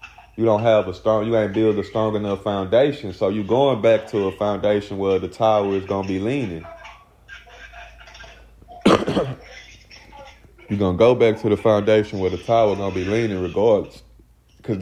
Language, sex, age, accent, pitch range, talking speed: English, male, 20-39, American, 95-115 Hz, 180 wpm